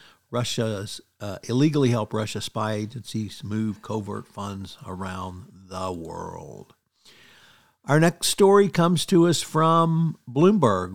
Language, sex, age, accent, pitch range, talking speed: English, male, 60-79, American, 105-130 Hz, 115 wpm